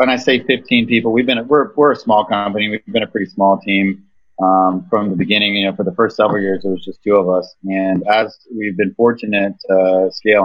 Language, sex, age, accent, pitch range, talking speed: English, male, 30-49, American, 95-110 Hz, 245 wpm